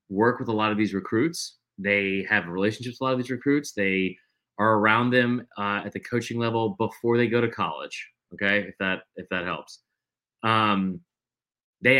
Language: English